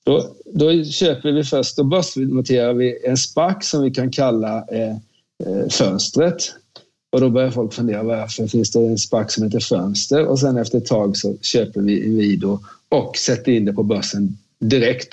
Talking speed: 175 wpm